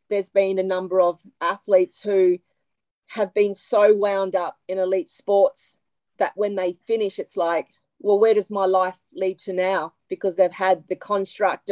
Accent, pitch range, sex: Australian, 185-215 Hz, female